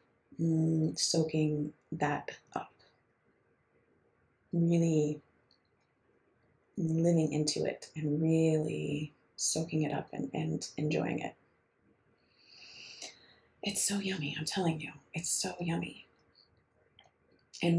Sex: female